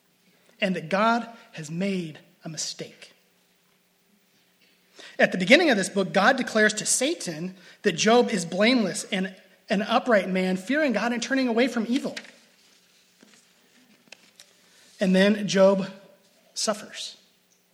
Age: 30-49